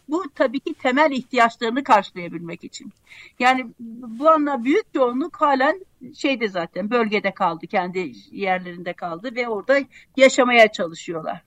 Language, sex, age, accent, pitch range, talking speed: Turkish, female, 60-79, native, 215-295 Hz, 125 wpm